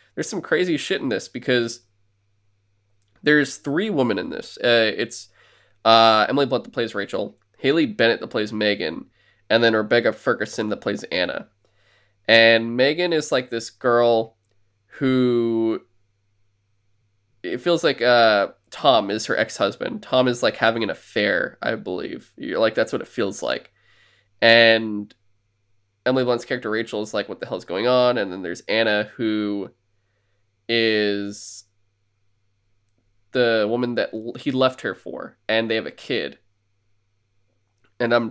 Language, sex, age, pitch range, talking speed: English, male, 20-39, 100-120 Hz, 145 wpm